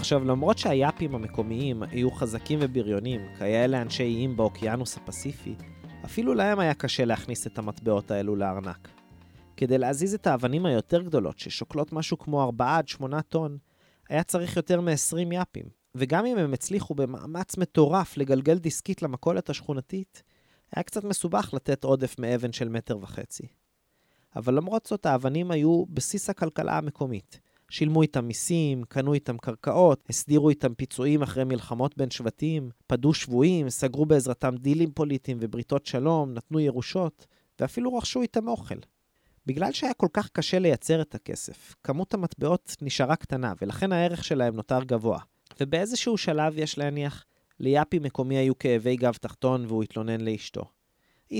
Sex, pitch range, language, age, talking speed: male, 125-165 Hz, Hebrew, 30-49, 140 wpm